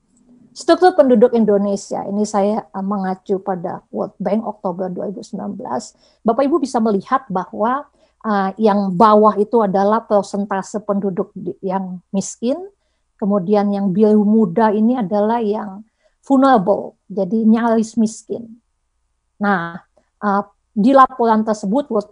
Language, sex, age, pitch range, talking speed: Indonesian, female, 50-69, 195-225 Hz, 110 wpm